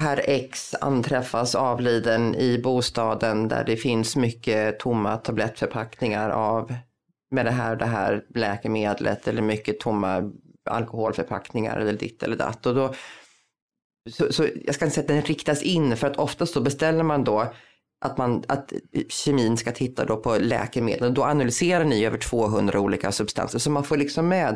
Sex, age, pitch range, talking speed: female, 30-49, 120-155 Hz, 155 wpm